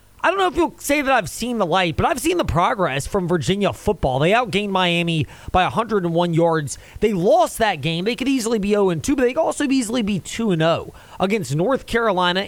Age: 30-49